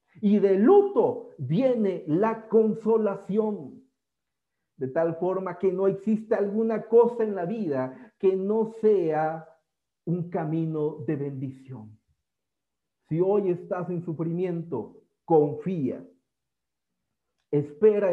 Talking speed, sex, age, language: 105 wpm, male, 50-69, Spanish